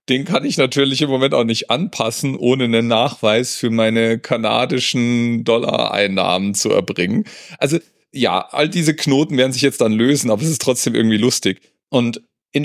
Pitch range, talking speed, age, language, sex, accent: 115-150 Hz, 170 wpm, 40-59, German, male, German